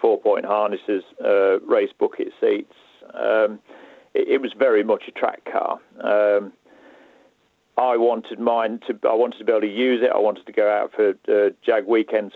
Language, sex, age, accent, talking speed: English, male, 40-59, British, 180 wpm